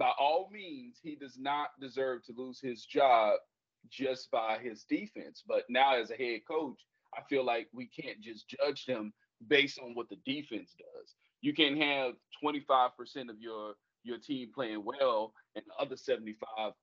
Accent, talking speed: American, 175 wpm